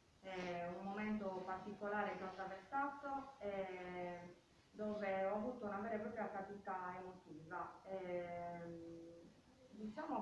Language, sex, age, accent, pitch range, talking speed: Italian, female, 20-39, native, 180-215 Hz, 110 wpm